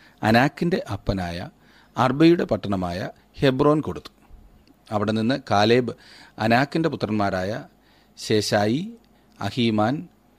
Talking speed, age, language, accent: 75 wpm, 40-59, Malayalam, native